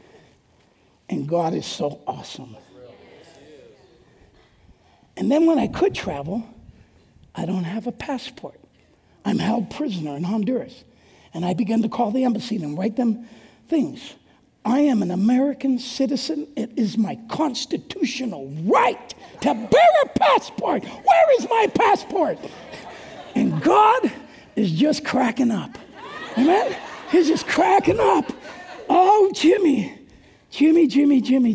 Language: English